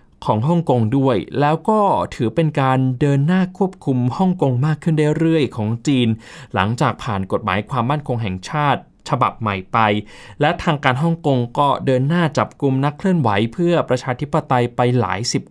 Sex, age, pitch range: male, 20-39, 120-165 Hz